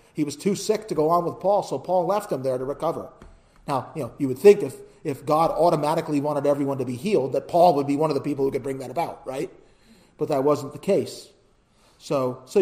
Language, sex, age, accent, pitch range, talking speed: English, male, 40-59, American, 130-170 Hz, 245 wpm